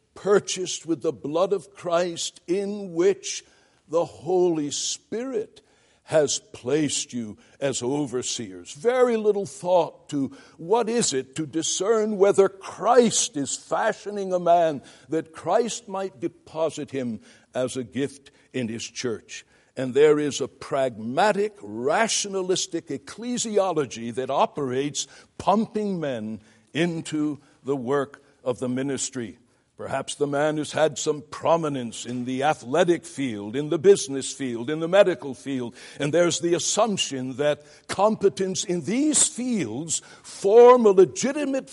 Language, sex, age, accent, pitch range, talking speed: English, male, 60-79, American, 140-230 Hz, 130 wpm